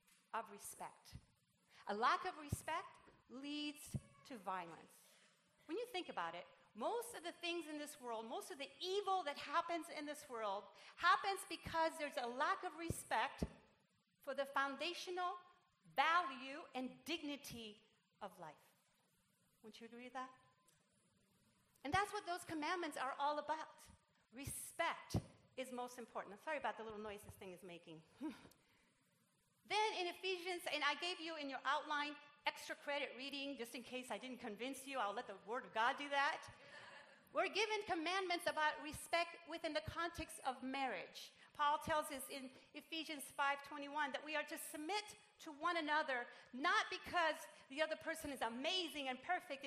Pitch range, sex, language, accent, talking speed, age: 265-340 Hz, female, English, American, 160 wpm, 40-59